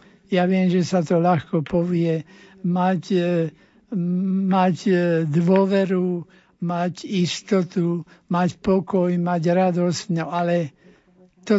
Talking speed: 95 wpm